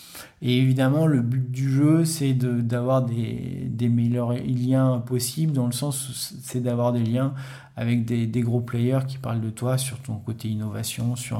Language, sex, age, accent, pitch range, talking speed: French, male, 40-59, French, 125-150 Hz, 190 wpm